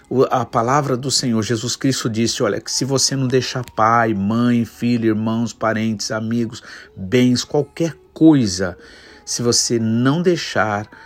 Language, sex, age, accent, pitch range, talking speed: Portuguese, male, 50-69, Brazilian, 110-135 Hz, 140 wpm